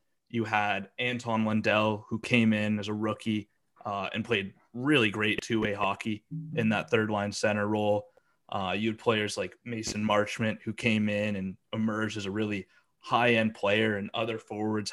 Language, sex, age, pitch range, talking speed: English, male, 20-39, 105-115 Hz, 180 wpm